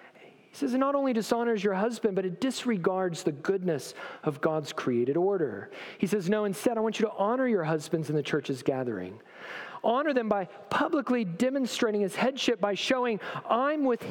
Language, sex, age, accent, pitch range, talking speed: English, male, 40-59, American, 185-250 Hz, 185 wpm